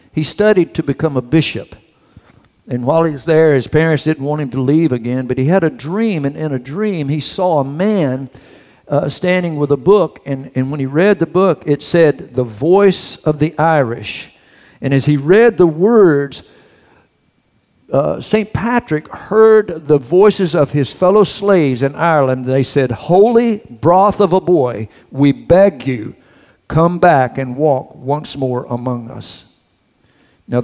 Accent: American